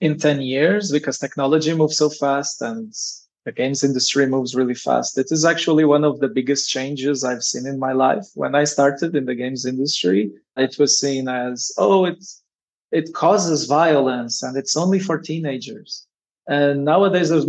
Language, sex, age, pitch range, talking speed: English, male, 20-39, 130-155 Hz, 180 wpm